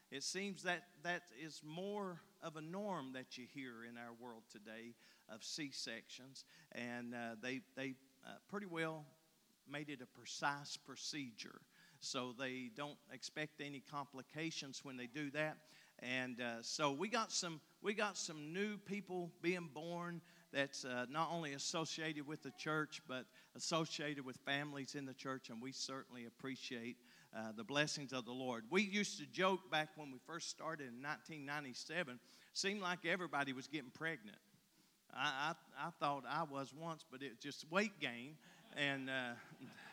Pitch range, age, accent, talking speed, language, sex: 135-175 Hz, 50-69, American, 165 wpm, English, male